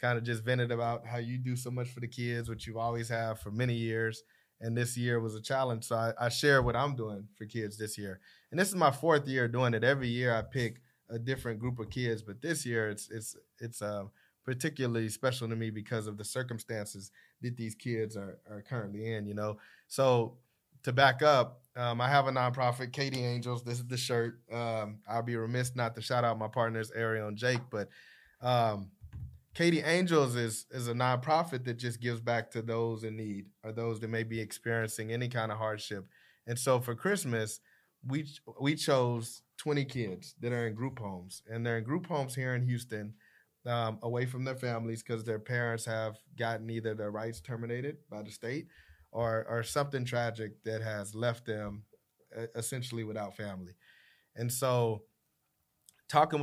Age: 20-39